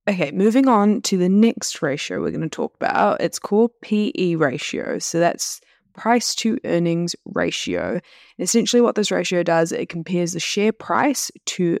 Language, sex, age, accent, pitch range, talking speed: English, female, 20-39, Australian, 160-195 Hz, 170 wpm